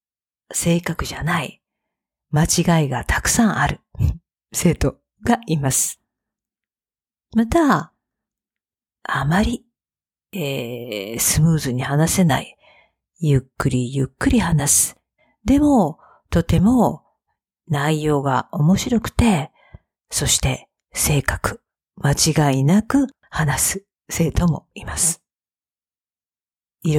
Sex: female